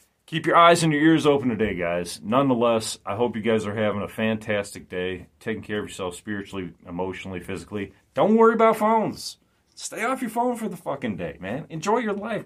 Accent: American